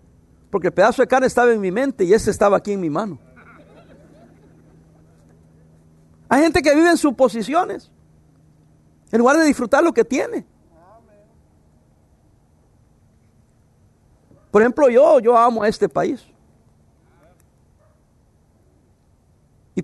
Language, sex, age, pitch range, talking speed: English, male, 50-69, 160-240 Hz, 115 wpm